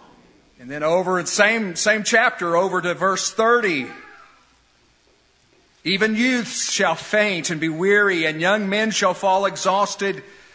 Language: English